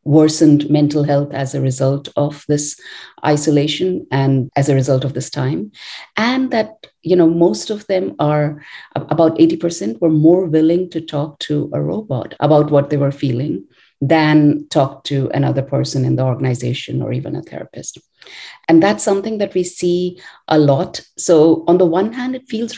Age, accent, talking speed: 50-69, Indian, 175 wpm